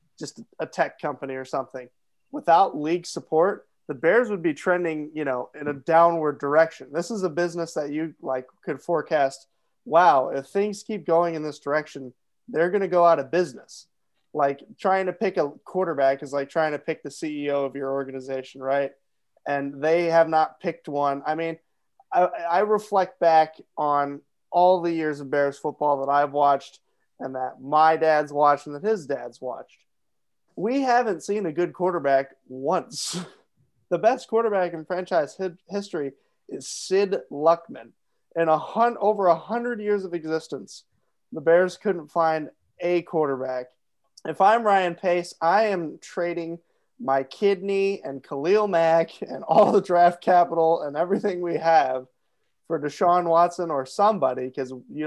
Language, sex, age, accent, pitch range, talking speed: English, male, 30-49, American, 140-180 Hz, 165 wpm